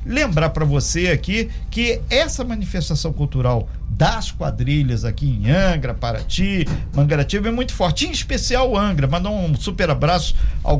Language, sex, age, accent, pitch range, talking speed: Portuguese, male, 50-69, Brazilian, 145-215 Hz, 145 wpm